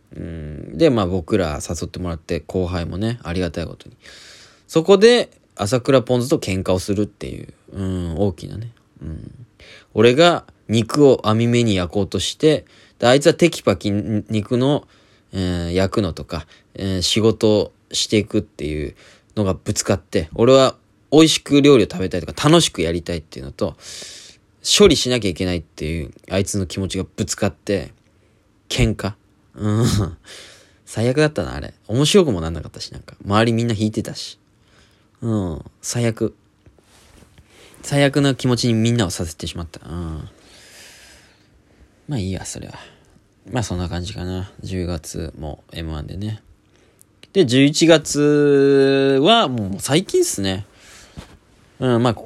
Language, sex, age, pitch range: Japanese, male, 20-39, 90-125 Hz